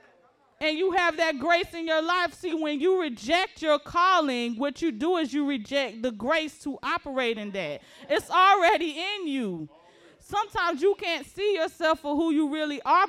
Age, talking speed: 30-49, 185 wpm